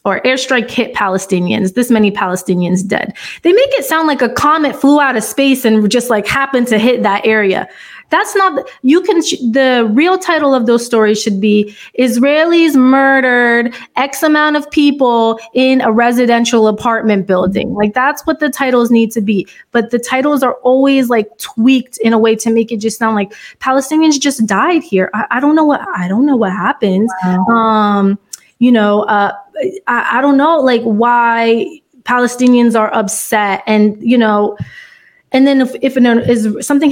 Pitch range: 215-270 Hz